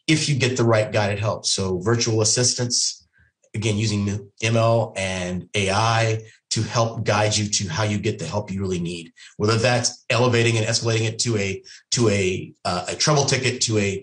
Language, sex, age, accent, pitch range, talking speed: English, male, 30-49, American, 105-125 Hz, 190 wpm